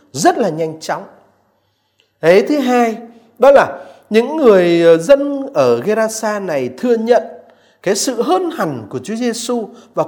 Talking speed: 150 wpm